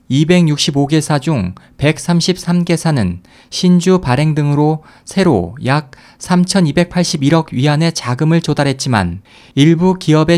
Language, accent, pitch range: Korean, native, 125-165 Hz